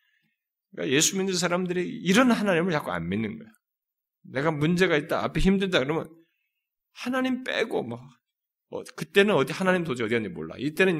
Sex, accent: male, native